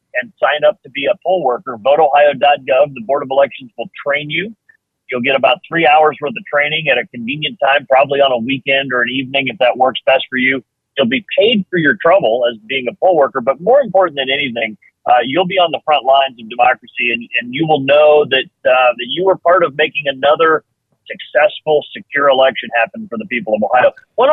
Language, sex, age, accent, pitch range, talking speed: English, male, 40-59, American, 135-180 Hz, 220 wpm